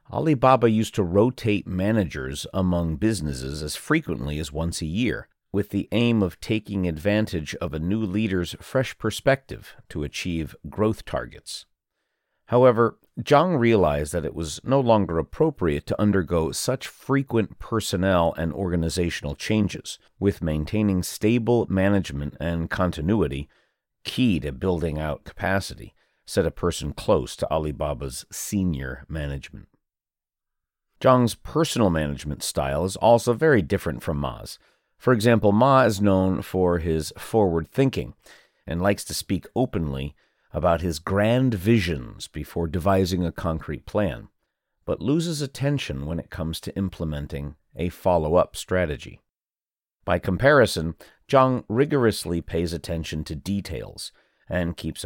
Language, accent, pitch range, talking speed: English, American, 80-110 Hz, 130 wpm